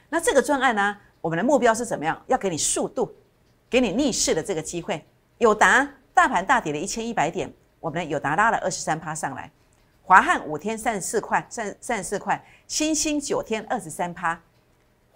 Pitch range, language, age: 170-255 Hz, Chinese, 50-69